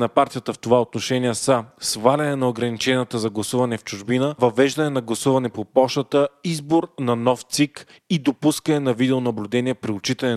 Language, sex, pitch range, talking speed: Bulgarian, male, 115-145 Hz, 160 wpm